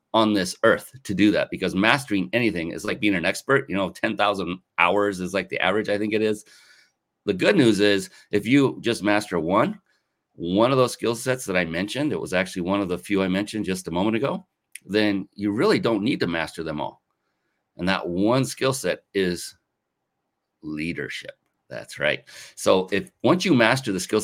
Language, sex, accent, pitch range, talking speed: English, male, American, 90-105 Hz, 205 wpm